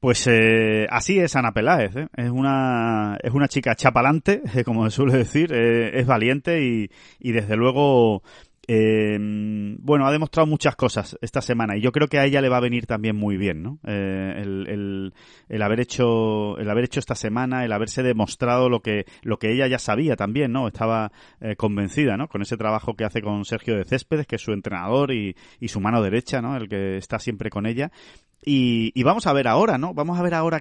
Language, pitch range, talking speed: Spanish, 110-140 Hz, 215 wpm